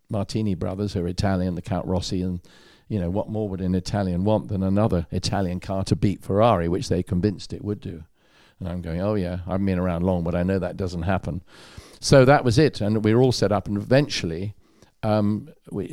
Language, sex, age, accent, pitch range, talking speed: English, male, 50-69, British, 90-105 Hz, 220 wpm